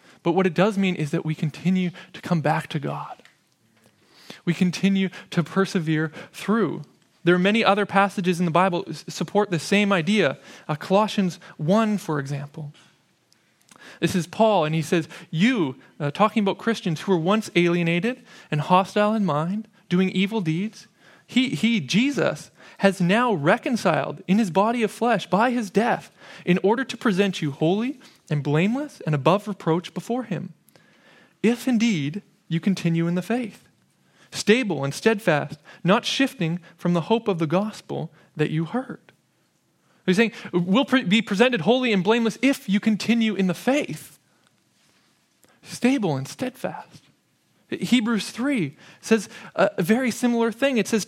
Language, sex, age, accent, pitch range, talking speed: English, male, 20-39, American, 175-225 Hz, 160 wpm